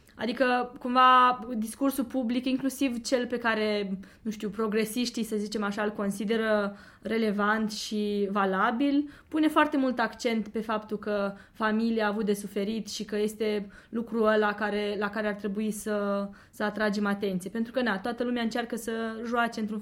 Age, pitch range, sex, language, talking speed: 20-39, 210-245 Hz, female, Romanian, 165 wpm